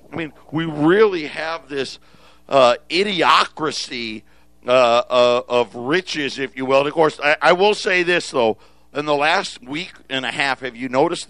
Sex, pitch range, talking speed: male, 125-150 Hz, 180 wpm